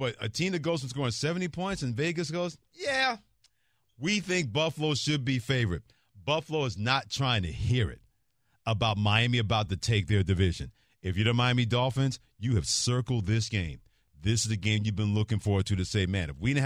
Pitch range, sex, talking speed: 110-135 Hz, male, 205 wpm